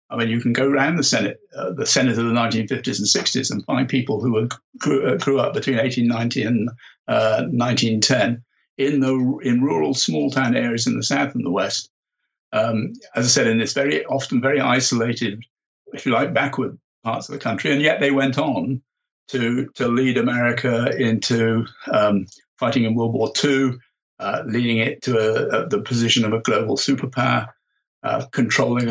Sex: male